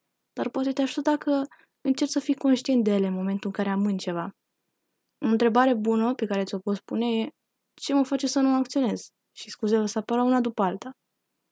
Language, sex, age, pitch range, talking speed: Romanian, female, 10-29, 195-250 Hz, 210 wpm